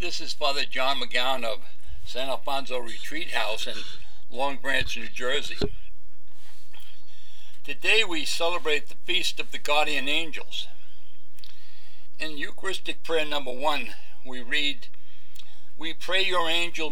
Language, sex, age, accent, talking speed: English, male, 60-79, American, 125 wpm